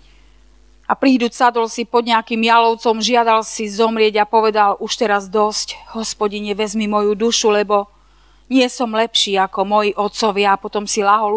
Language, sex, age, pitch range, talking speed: Slovak, female, 40-59, 210-235 Hz, 160 wpm